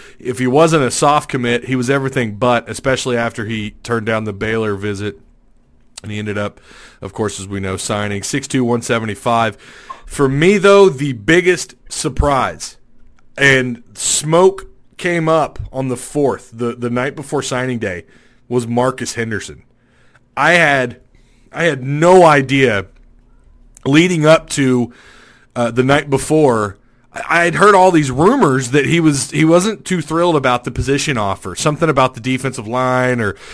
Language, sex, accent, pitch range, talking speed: English, male, American, 110-140 Hz, 155 wpm